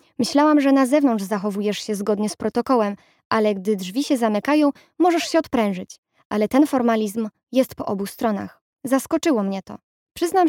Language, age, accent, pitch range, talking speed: Polish, 20-39, native, 215-260 Hz, 160 wpm